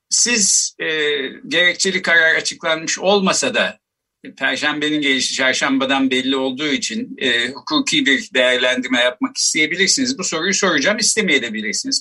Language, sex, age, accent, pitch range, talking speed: Turkish, male, 50-69, native, 135-230 Hz, 115 wpm